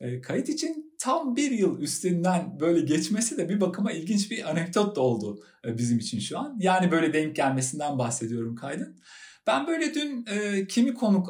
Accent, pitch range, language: native, 140-215 Hz, Turkish